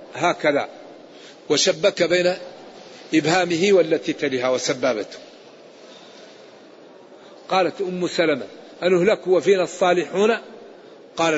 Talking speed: 80 wpm